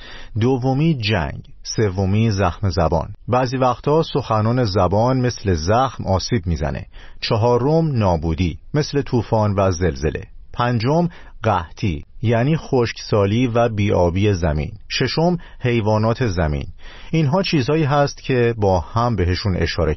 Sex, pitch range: male, 95-130 Hz